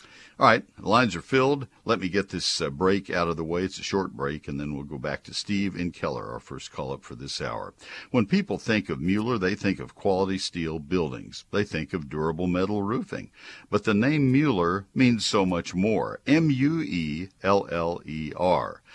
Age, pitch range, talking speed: 60-79, 80-110 Hz, 190 wpm